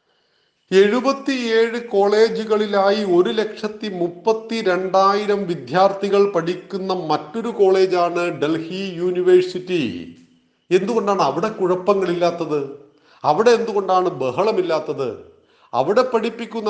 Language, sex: Malayalam, male